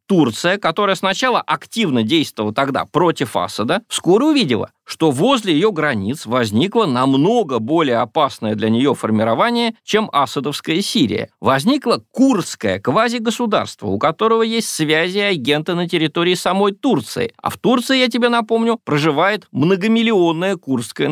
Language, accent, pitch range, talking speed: Russian, native, 140-220 Hz, 130 wpm